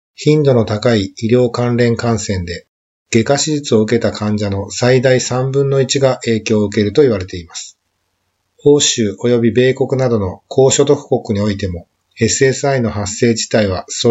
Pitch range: 105-135 Hz